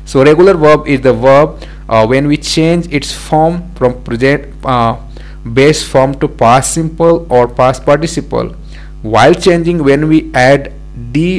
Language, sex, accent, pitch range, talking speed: English, male, Indian, 125-155 Hz, 150 wpm